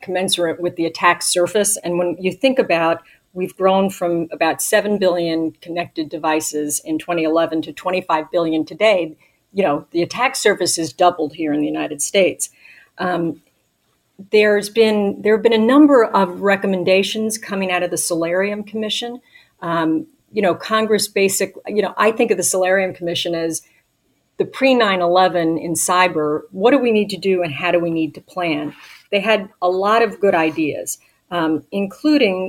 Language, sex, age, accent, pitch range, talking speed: English, female, 50-69, American, 165-200 Hz, 170 wpm